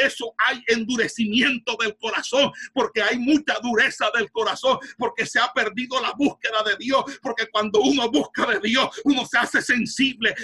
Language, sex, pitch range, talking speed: Spanish, male, 215-235 Hz, 165 wpm